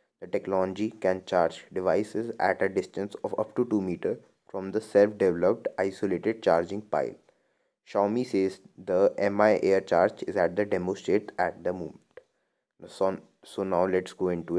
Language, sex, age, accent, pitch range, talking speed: English, male, 20-39, Indian, 95-110 Hz, 160 wpm